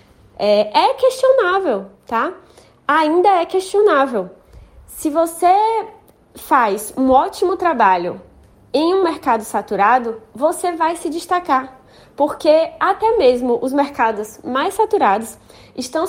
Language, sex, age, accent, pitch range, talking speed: Portuguese, female, 20-39, Brazilian, 225-350 Hz, 105 wpm